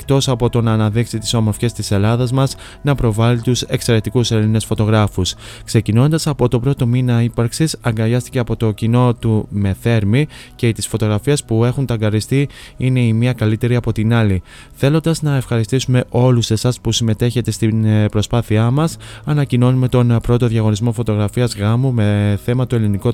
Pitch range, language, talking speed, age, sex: 110-125 Hz, Greek, 160 wpm, 20-39, male